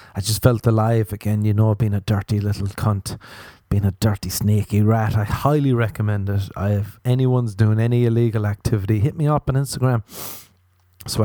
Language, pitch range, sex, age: English, 105-130 Hz, male, 30-49